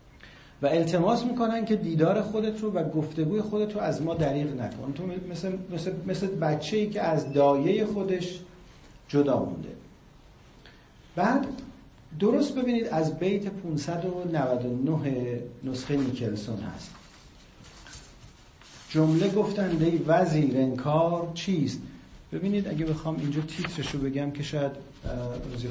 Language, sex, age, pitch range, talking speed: Persian, male, 50-69, 140-190 Hz, 115 wpm